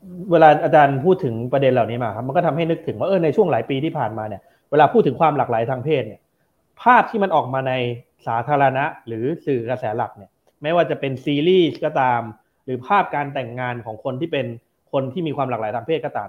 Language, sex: Thai, male